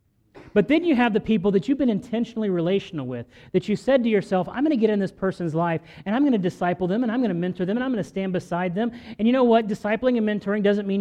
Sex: male